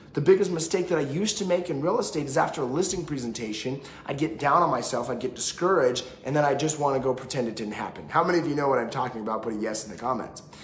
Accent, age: American, 30-49